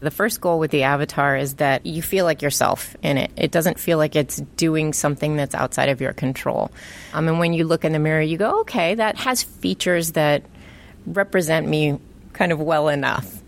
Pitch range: 140-165 Hz